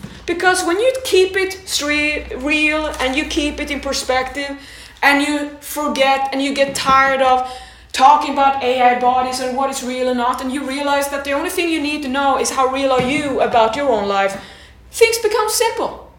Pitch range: 270-330 Hz